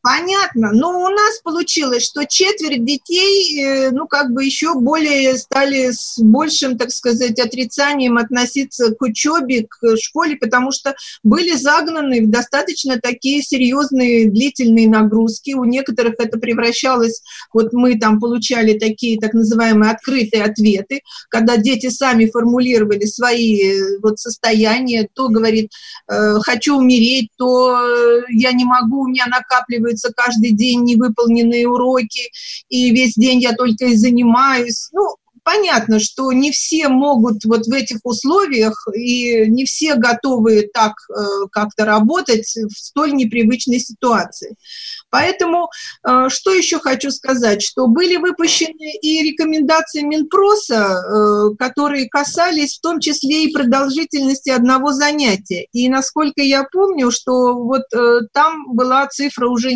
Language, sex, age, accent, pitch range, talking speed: Russian, female, 50-69, native, 230-285 Hz, 135 wpm